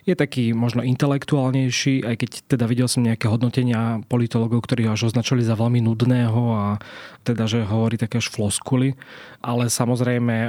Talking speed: 155 wpm